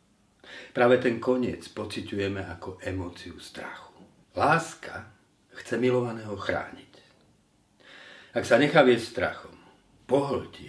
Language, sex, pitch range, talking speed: Slovak, male, 100-125 Hz, 95 wpm